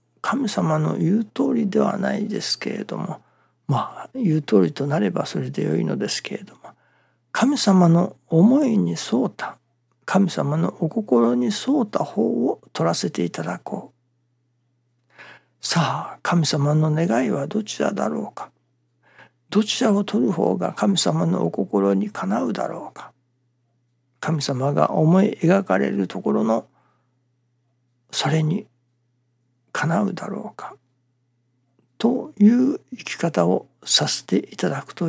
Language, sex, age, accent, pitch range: Japanese, male, 60-79, native, 125-190 Hz